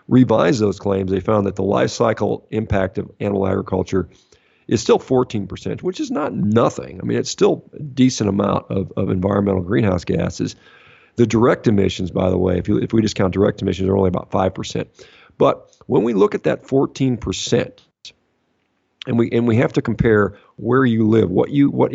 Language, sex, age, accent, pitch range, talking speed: English, male, 50-69, American, 95-115 Hz, 190 wpm